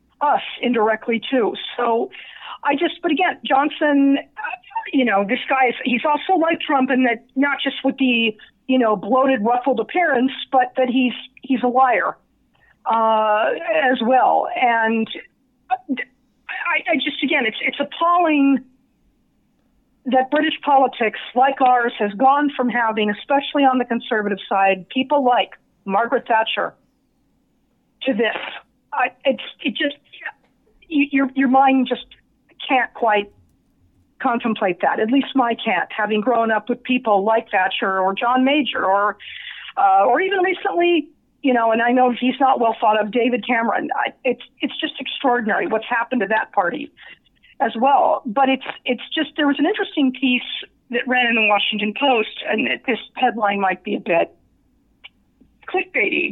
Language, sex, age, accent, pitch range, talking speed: English, female, 50-69, American, 230-275 Hz, 155 wpm